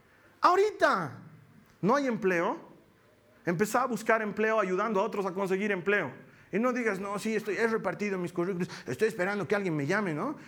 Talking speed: 180 wpm